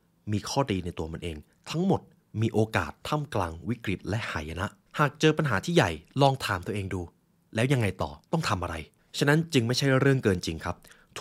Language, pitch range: Thai, 95-140 Hz